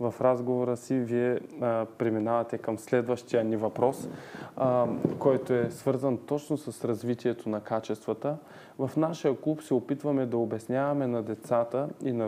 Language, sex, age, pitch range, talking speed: Bulgarian, male, 20-39, 115-145 Hz, 145 wpm